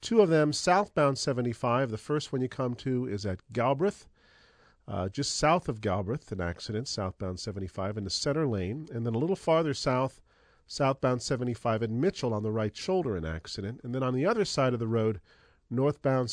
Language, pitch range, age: English, 100-135 Hz, 40-59